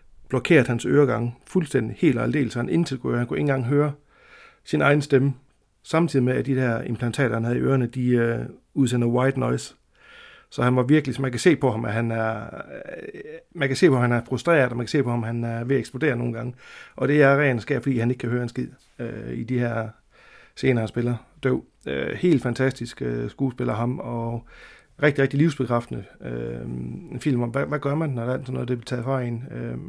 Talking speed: 235 wpm